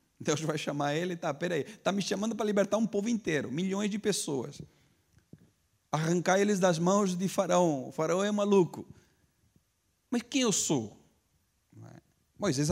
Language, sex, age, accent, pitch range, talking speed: Portuguese, male, 40-59, Brazilian, 130-190 Hz, 160 wpm